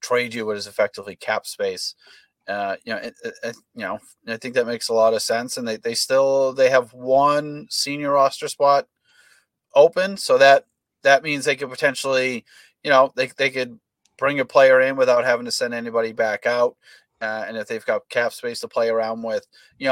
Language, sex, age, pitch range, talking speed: English, male, 30-49, 115-145 Hz, 200 wpm